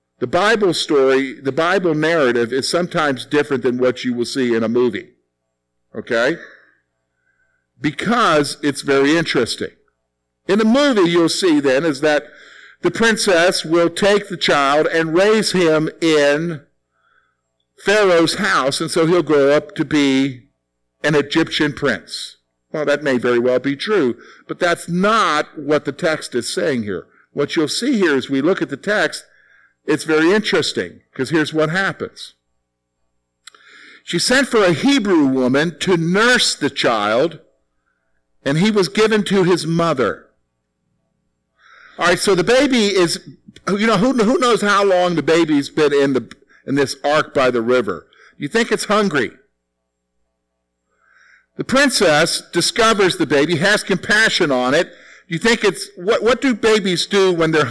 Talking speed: 150 wpm